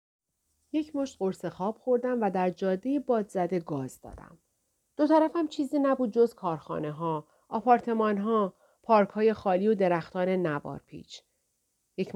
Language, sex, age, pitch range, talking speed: Persian, female, 40-59, 175-225 Hz, 140 wpm